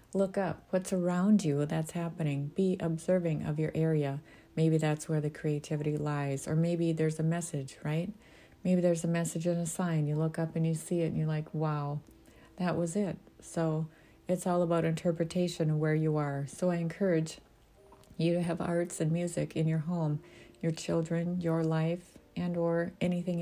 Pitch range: 155-175 Hz